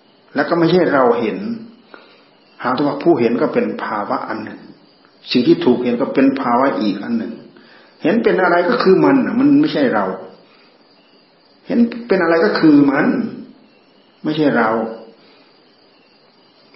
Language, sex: Thai, male